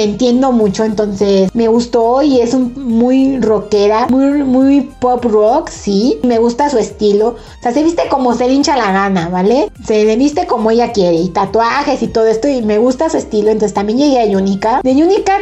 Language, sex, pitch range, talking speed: Spanish, female, 215-265 Hz, 200 wpm